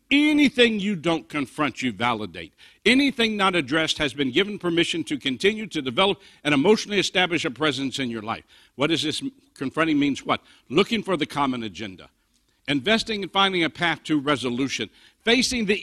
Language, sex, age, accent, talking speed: English, male, 60-79, American, 170 wpm